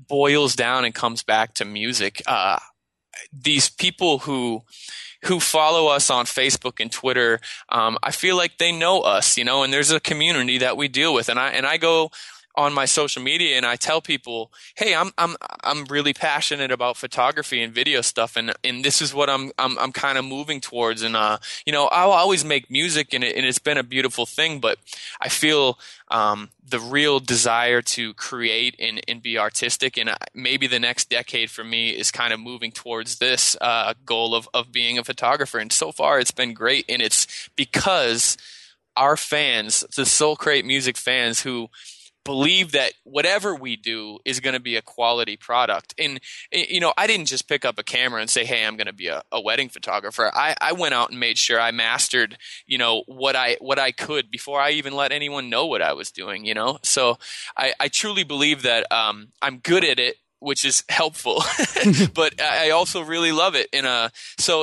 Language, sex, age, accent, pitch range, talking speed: English, male, 20-39, American, 120-150 Hz, 210 wpm